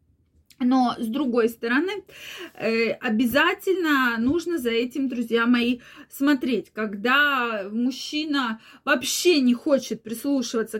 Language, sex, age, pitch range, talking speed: Russian, female, 20-39, 225-275 Hz, 95 wpm